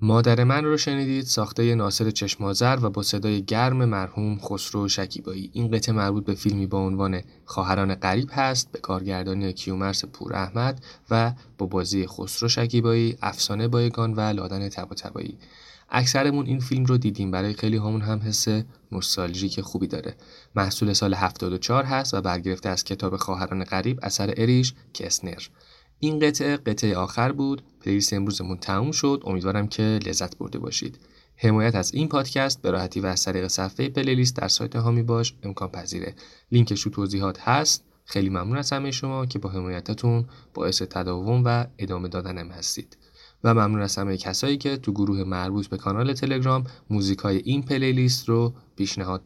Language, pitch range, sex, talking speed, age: Persian, 95-125 Hz, male, 160 wpm, 20-39